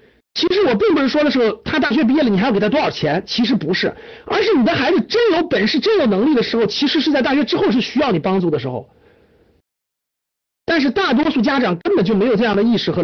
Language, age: Chinese, 50-69